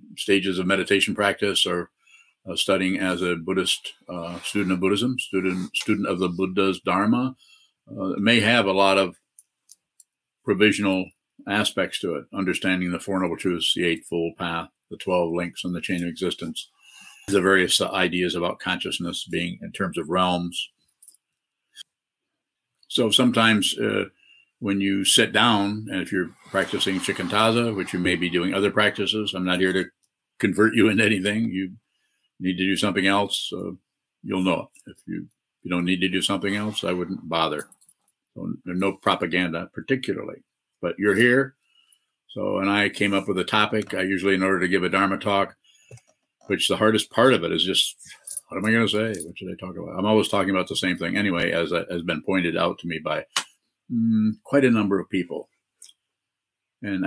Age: 50-69